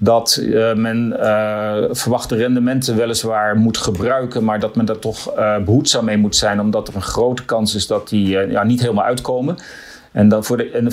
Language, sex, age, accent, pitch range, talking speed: English, male, 40-59, Dutch, 110-125 Hz, 180 wpm